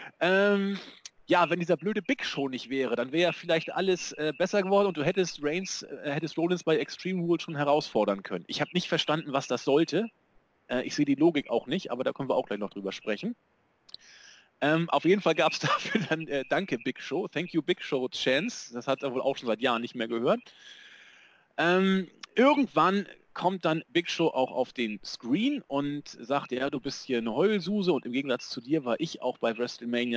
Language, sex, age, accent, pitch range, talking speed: German, male, 30-49, German, 120-175 Hz, 215 wpm